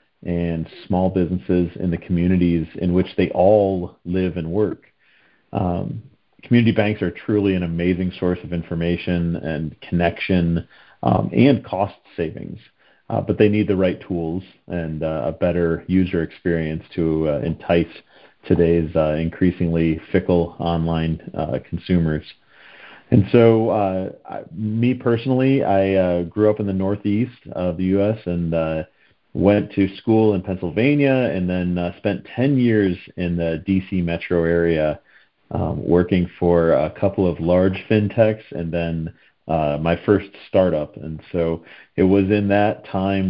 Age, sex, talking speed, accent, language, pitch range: 40-59, male, 150 wpm, American, English, 85-100 Hz